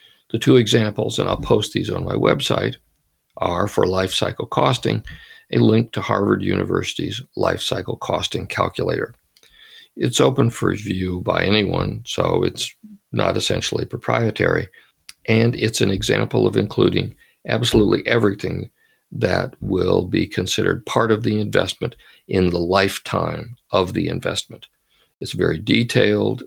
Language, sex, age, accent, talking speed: English, male, 60-79, American, 135 wpm